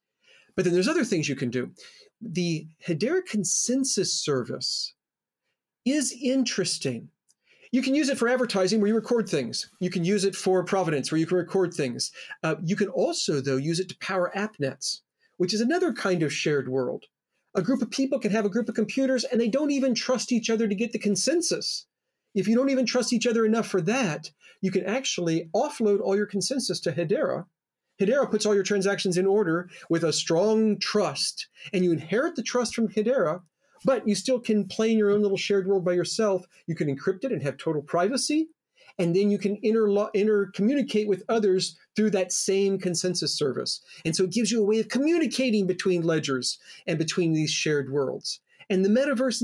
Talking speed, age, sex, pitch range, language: 200 wpm, 40-59, male, 180-240 Hz, English